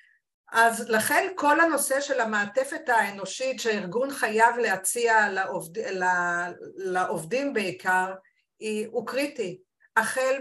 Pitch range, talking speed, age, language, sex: 205-245 Hz, 90 wpm, 50-69, Hebrew, female